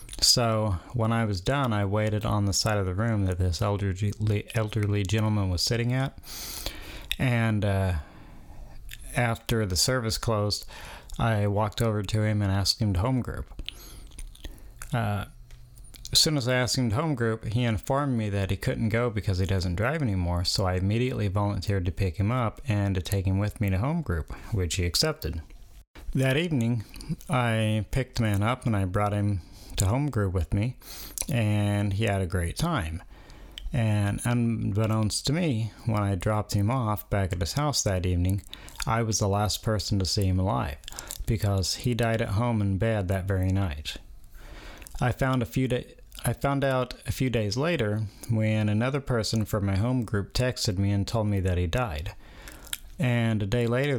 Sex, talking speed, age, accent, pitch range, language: male, 185 wpm, 30-49, American, 100-120 Hz, English